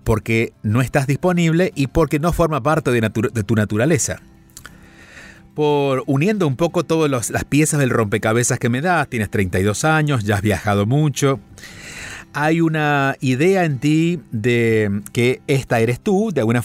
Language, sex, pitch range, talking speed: Spanish, male, 105-145 Hz, 160 wpm